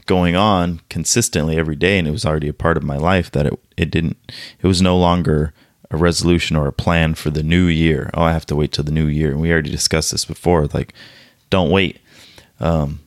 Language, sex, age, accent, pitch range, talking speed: English, male, 30-49, American, 80-110 Hz, 230 wpm